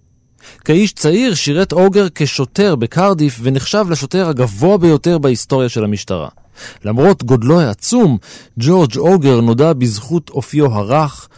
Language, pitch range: Hebrew, 115-170 Hz